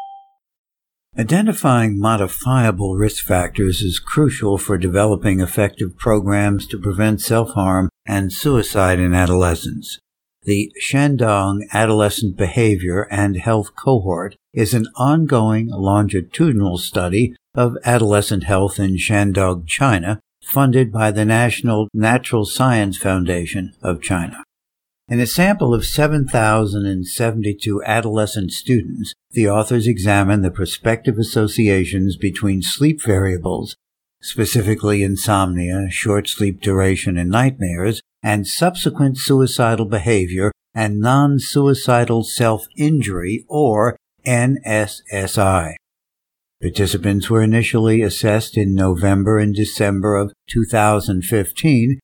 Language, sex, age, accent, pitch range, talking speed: English, male, 60-79, American, 100-120 Hz, 100 wpm